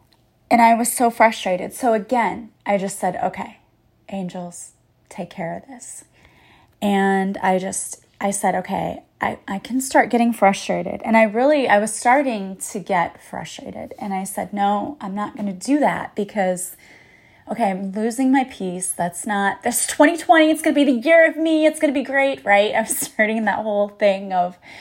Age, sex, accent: 20-39, female, American